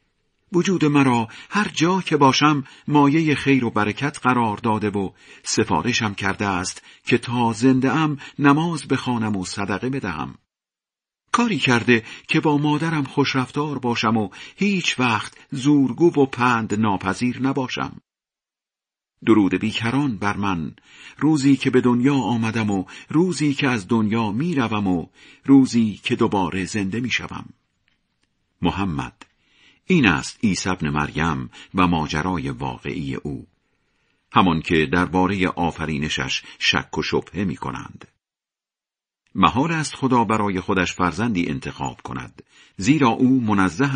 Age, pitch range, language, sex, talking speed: 50-69, 95-140 Hz, Persian, male, 125 wpm